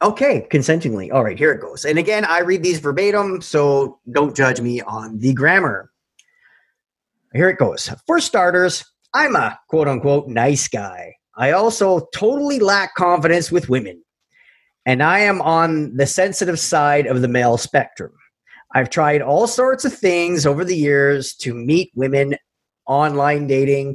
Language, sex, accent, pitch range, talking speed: English, male, American, 140-195 Hz, 155 wpm